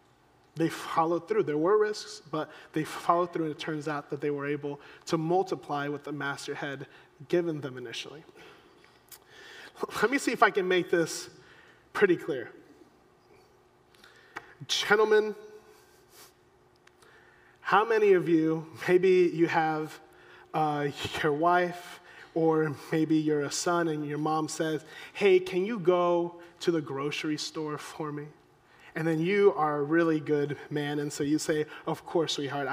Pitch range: 155-195 Hz